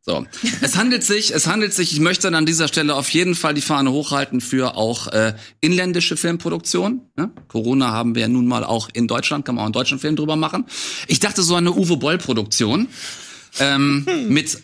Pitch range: 135-180 Hz